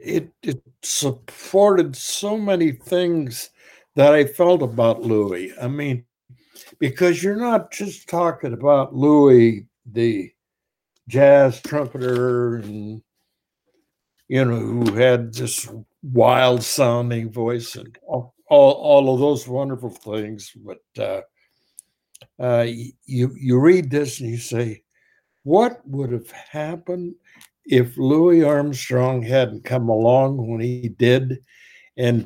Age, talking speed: 60-79, 120 wpm